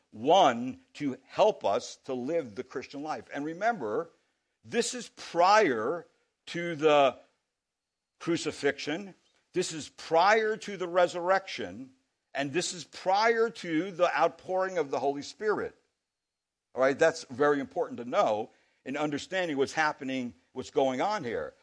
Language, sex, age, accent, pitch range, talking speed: English, male, 60-79, American, 140-205 Hz, 135 wpm